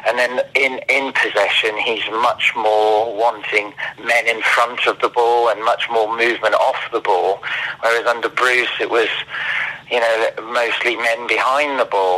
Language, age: English, 40-59